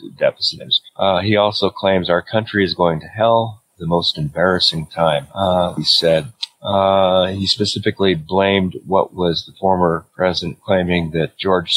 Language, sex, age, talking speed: English, male, 40-59, 160 wpm